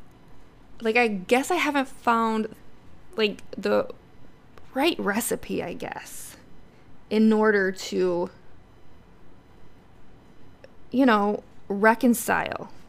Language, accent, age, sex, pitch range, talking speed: English, American, 20-39, female, 195-240 Hz, 85 wpm